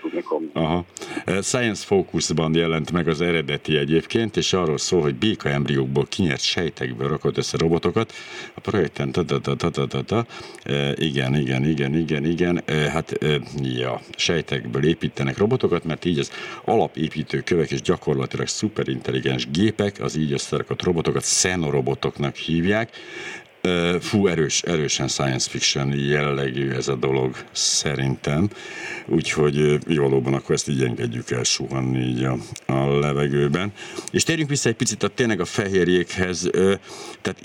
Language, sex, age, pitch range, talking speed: Hungarian, male, 60-79, 70-85 Hz, 135 wpm